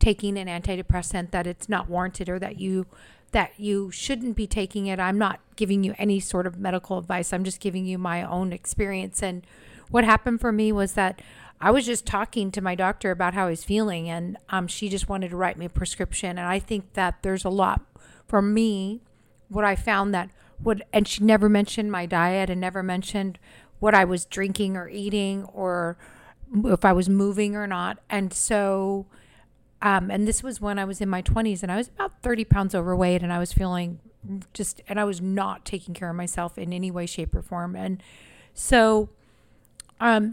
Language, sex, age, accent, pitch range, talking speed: English, female, 50-69, American, 185-215 Hz, 205 wpm